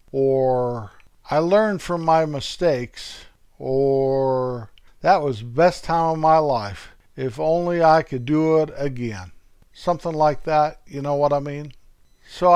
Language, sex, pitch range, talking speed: English, male, 130-155 Hz, 150 wpm